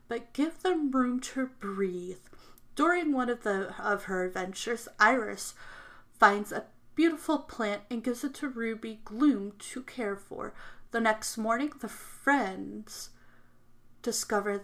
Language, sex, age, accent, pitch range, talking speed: English, female, 30-49, American, 195-240 Hz, 135 wpm